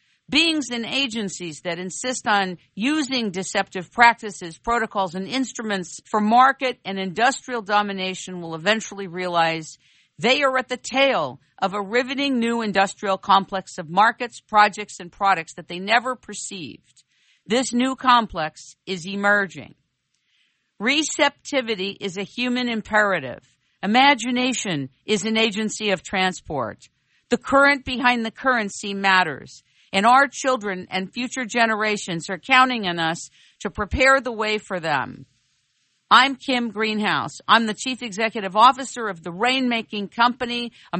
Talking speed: 135 wpm